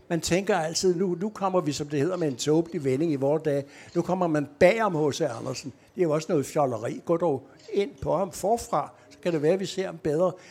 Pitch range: 150-190 Hz